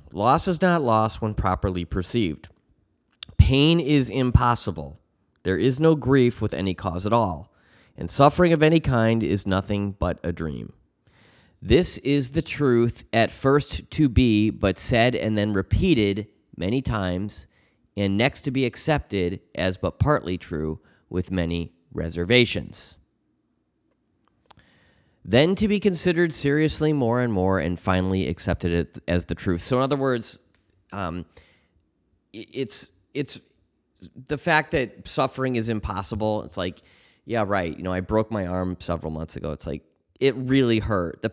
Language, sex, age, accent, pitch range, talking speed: English, male, 30-49, American, 90-125 Hz, 150 wpm